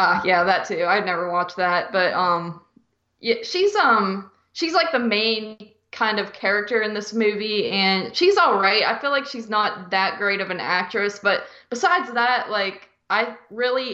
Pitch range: 190-225 Hz